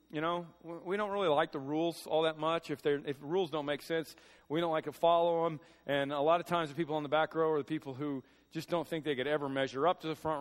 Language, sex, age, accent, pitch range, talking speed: English, male, 40-59, American, 120-170 Hz, 280 wpm